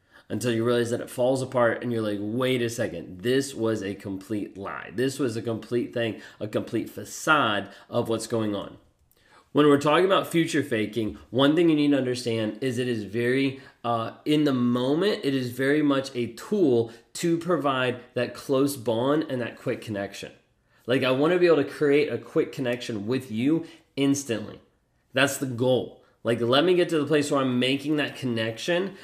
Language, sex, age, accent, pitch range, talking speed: English, male, 30-49, American, 115-150 Hz, 195 wpm